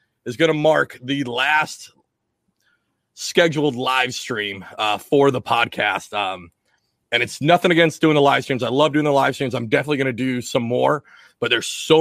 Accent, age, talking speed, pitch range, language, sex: American, 30-49, 190 wpm, 120-155 Hz, English, male